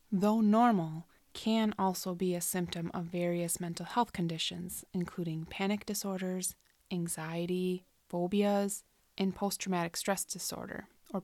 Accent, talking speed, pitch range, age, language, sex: American, 115 wpm, 170-200 Hz, 20-39, English, female